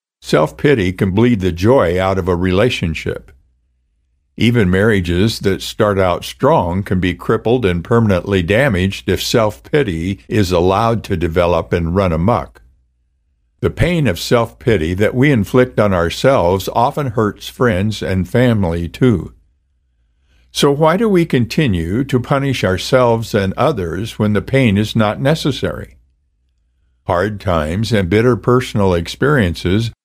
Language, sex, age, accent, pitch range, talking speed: English, male, 60-79, American, 80-115 Hz, 140 wpm